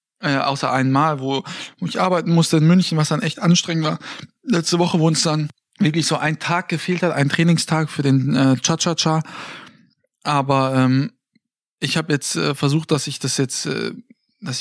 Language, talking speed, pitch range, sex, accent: German, 185 wpm, 140-165 Hz, male, German